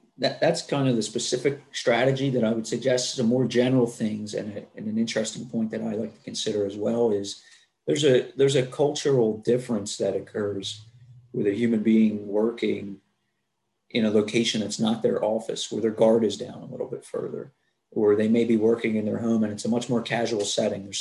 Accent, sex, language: American, male, English